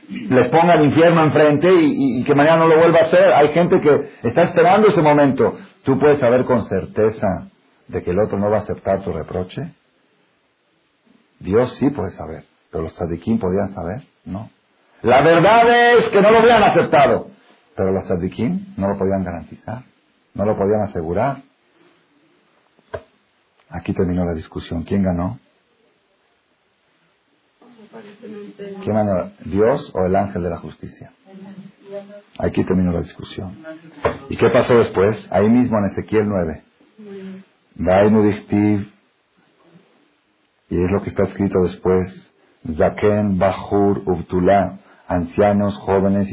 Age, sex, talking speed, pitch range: 50-69, male, 135 wpm, 95-150 Hz